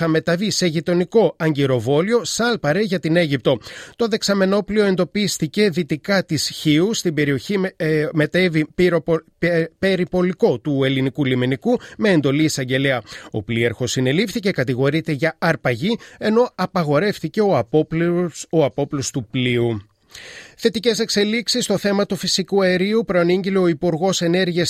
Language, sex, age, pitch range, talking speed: Greek, male, 30-49, 140-190 Hz, 130 wpm